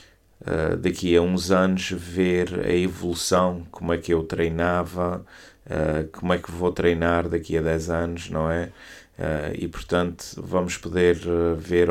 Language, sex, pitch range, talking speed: Portuguese, male, 80-90 Hz, 155 wpm